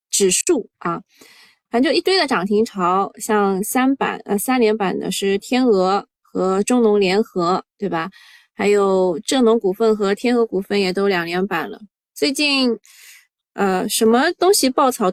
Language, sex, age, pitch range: Chinese, female, 20-39, 205-255 Hz